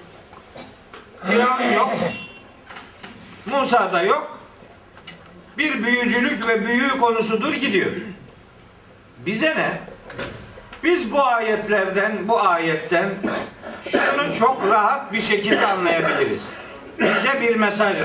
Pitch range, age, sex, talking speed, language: 215-255 Hz, 60-79, male, 95 wpm, Turkish